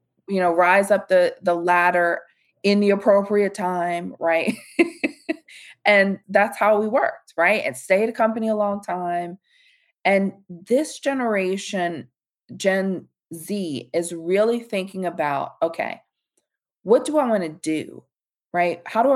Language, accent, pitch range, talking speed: English, American, 175-220 Hz, 140 wpm